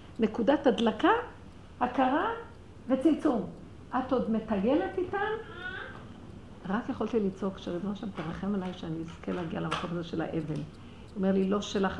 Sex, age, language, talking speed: female, 50-69, Hebrew, 135 wpm